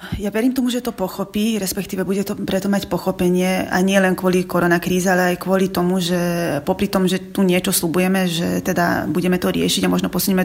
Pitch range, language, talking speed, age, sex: 175-195 Hz, Slovak, 205 wpm, 20-39, female